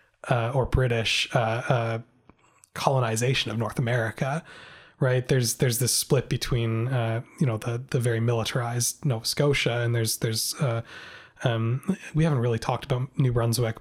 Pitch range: 115-145 Hz